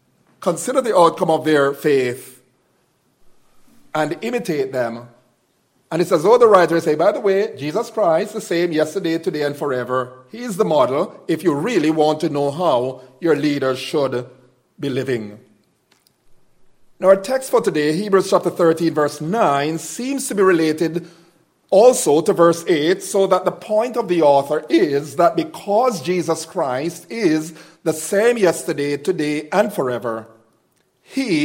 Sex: male